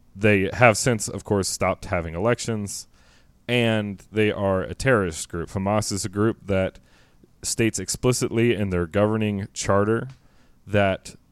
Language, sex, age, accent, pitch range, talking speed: English, male, 30-49, American, 95-110 Hz, 140 wpm